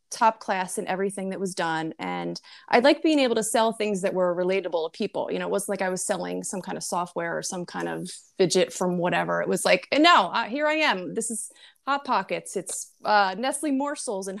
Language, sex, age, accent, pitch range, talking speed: English, female, 30-49, American, 185-255 Hz, 240 wpm